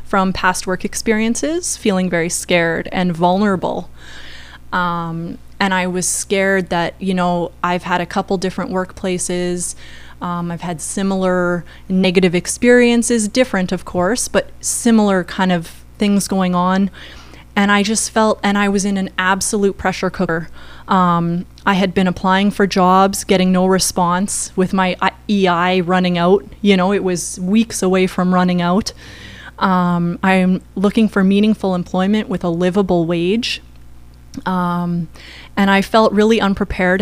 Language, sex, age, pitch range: English, female, 20-39, 175-195 Hz